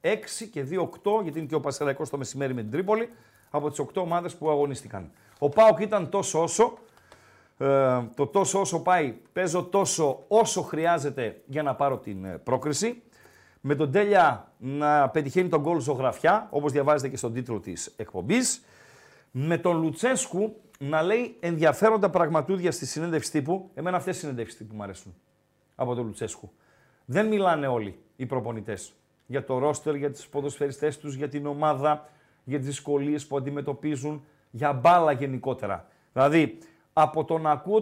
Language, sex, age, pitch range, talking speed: Greek, male, 40-59, 145-205 Hz, 155 wpm